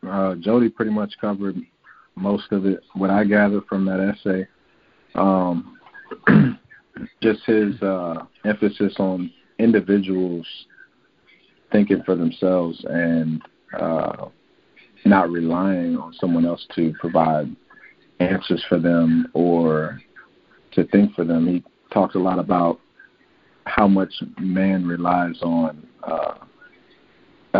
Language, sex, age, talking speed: English, male, 40-59, 115 wpm